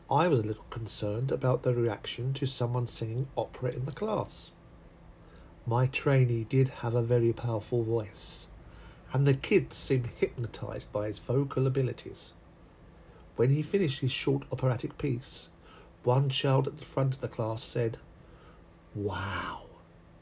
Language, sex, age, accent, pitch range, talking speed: English, male, 50-69, British, 115-140 Hz, 145 wpm